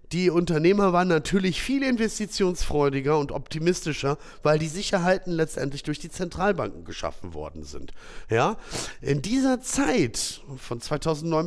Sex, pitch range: male, 140-200 Hz